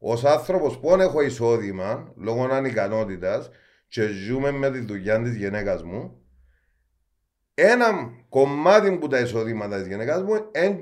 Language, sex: Greek, male